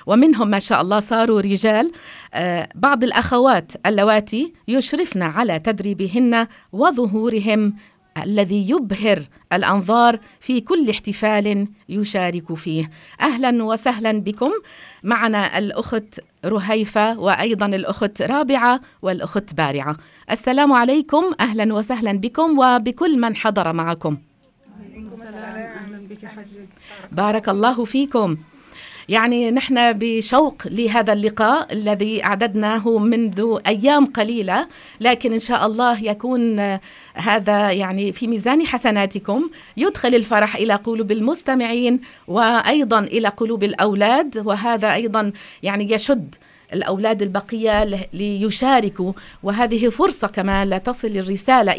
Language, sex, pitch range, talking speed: English, female, 200-245 Hz, 100 wpm